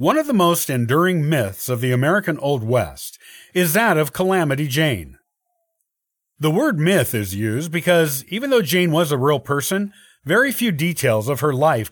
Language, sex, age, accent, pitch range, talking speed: English, male, 50-69, American, 125-180 Hz, 175 wpm